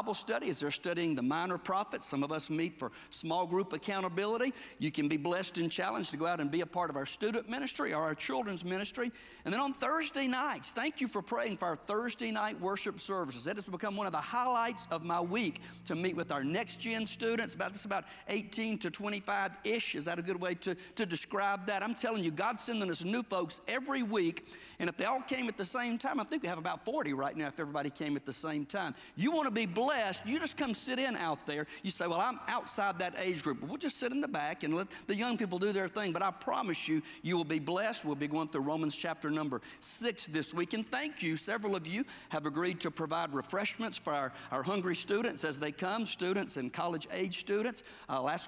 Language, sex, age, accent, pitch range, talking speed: English, male, 50-69, American, 160-225 Hz, 240 wpm